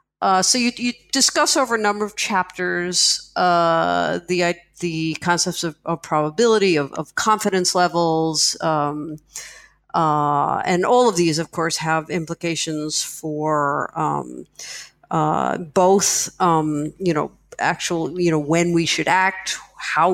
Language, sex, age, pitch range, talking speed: English, female, 50-69, 160-190 Hz, 135 wpm